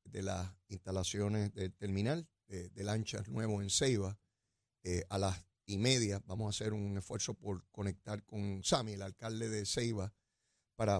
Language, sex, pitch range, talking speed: Spanish, male, 105-125 Hz, 165 wpm